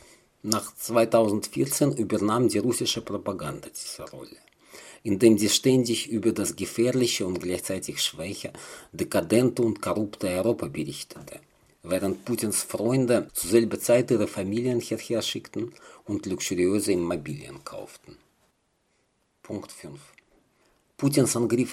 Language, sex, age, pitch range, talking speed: German, male, 50-69, 105-130 Hz, 110 wpm